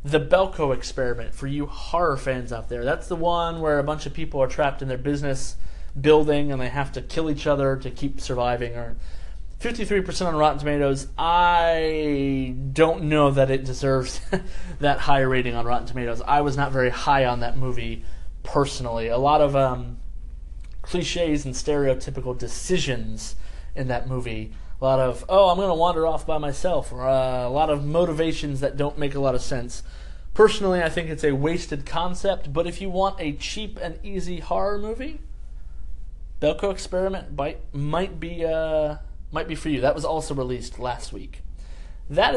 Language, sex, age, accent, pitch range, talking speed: English, male, 20-39, American, 120-160 Hz, 180 wpm